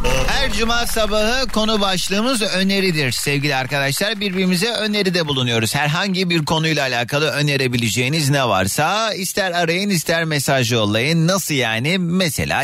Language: Turkish